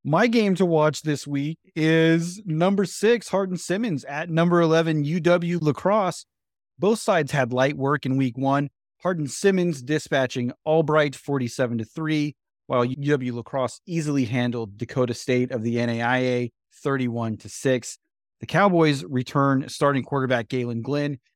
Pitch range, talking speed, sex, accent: 125-160 Hz, 145 wpm, male, American